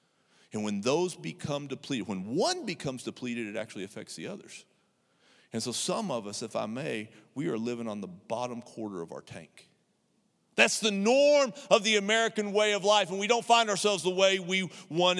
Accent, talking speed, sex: American, 195 wpm, male